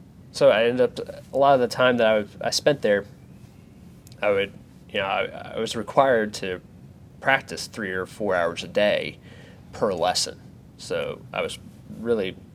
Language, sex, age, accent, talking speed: English, male, 20-39, American, 170 wpm